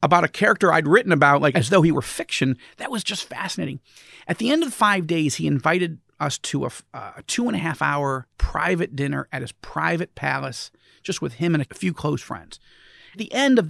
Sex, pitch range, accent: male, 145-190 Hz, American